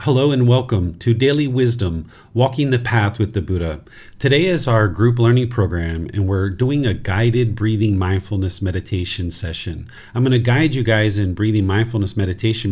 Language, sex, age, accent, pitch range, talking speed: English, male, 40-59, American, 95-115 Hz, 175 wpm